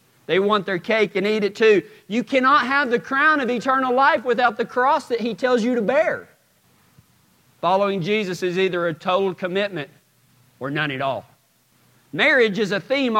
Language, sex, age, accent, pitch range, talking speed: English, male, 40-59, American, 155-230 Hz, 180 wpm